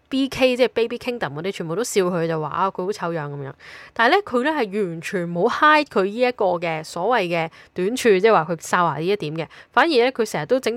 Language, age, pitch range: Chinese, 10-29, 170-245 Hz